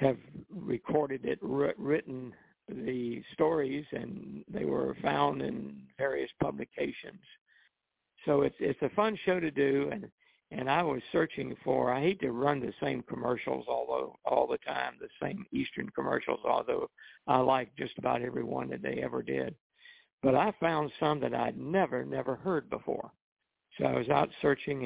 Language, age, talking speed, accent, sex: English, 60-79, 165 wpm, American, male